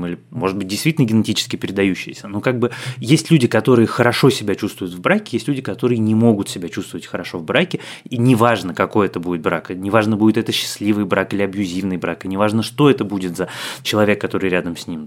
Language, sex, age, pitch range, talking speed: Russian, male, 20-39, 100-130 Hz, 215 wpm